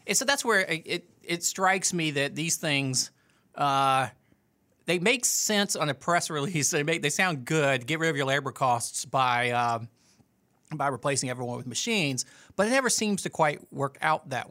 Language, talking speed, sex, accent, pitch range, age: English, 195 wpm, male, American, 130-160 Hz, 30-49